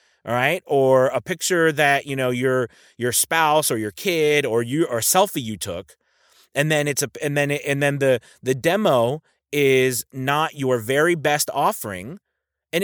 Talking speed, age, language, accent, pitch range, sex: 180 wpm, 30-49, English, American, 125-165 Hz, male